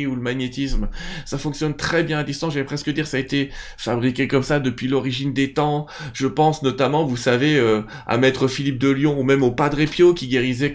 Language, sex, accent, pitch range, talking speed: French, male, French, 130-170 Hz, 225 wpm